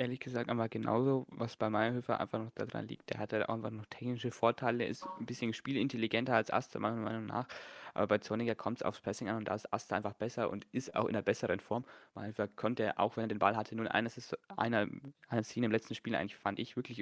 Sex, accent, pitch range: male, German, 105-120 Hz